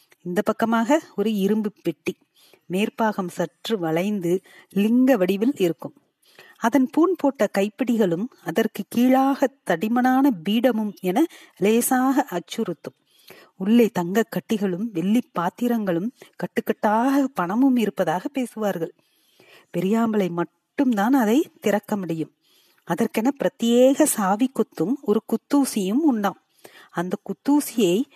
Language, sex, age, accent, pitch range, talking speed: Tamil, female, 40-59, native, 195-270 Hz, 90 wpm